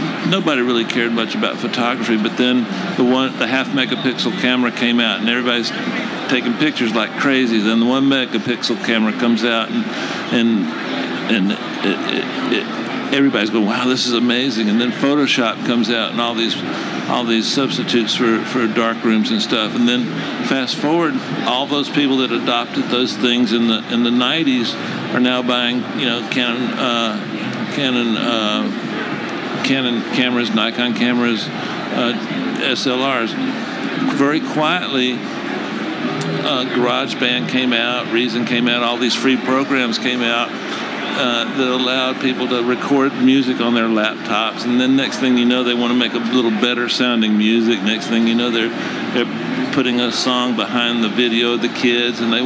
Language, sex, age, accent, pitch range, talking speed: English, male, 60-79, American, 115-130 Hz, 165 wpm